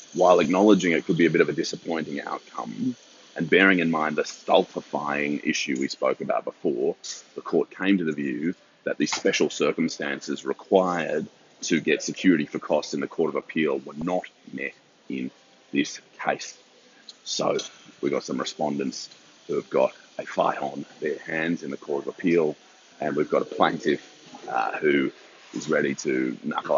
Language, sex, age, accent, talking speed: English, male, 30-49, Australian, 175 wpm